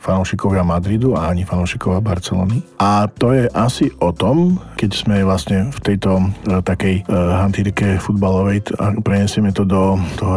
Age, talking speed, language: 50-69, 155 wpm, Slovak